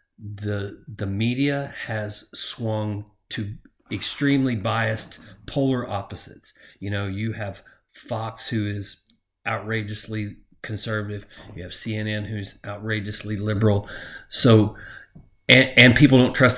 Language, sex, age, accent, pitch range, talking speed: English, male, 40-59, American, 105-125 Hz, 110 wpm